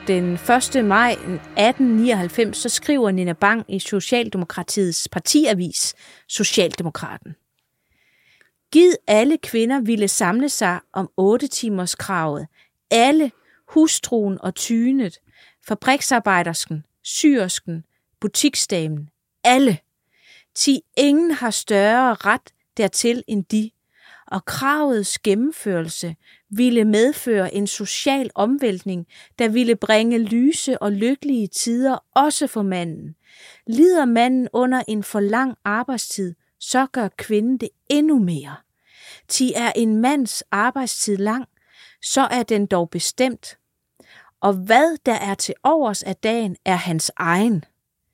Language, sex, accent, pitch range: Danish, female, native, 190-255 Hz